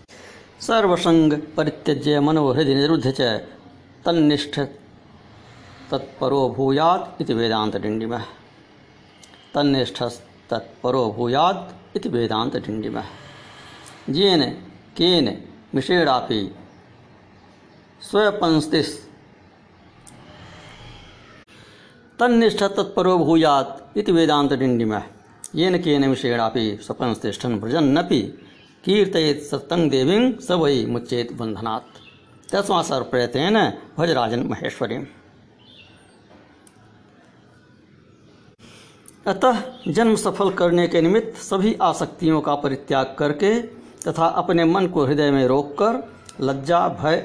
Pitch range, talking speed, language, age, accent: 120-170 Hz, 55 wpm, Hindi, 60-79, native